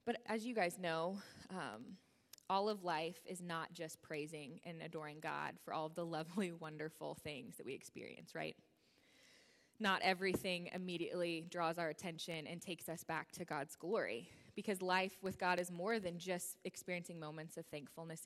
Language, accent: English, American